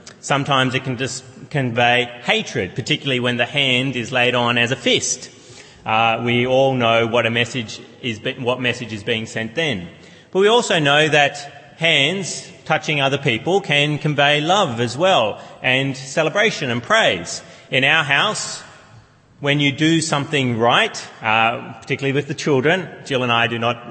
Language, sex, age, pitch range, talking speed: English, male, 30-49, 125-165 Hz, 160 wpm